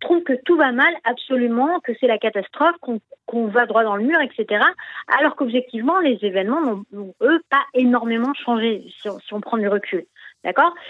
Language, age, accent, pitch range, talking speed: French, 40-59, French, 205-270 Hz, 185 wpm